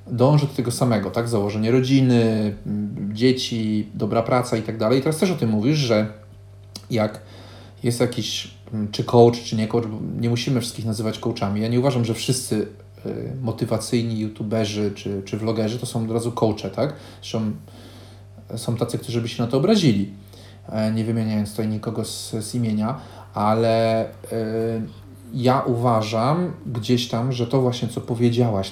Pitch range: 105-125 Hz